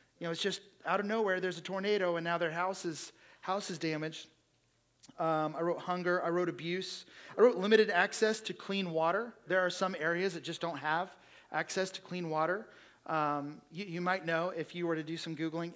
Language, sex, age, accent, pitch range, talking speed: English, male, 30-49, American, 165-200 Hz, 210 wpm